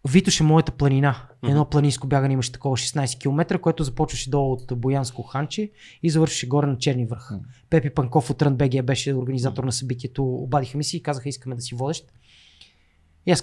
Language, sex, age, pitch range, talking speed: Bulgarian, male, 20-39, 130-160 Hz, 185 wpm